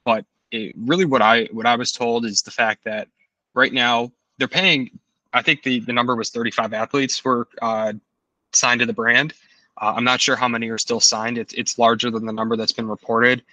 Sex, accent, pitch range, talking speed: male, American, 110-130 Hz, 215 wpm